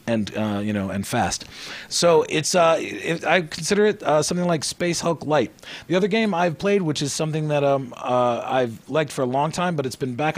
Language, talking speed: English, 230 wpm